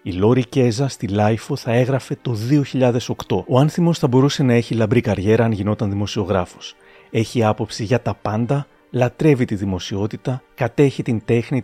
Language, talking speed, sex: Greek, 160 wpm, male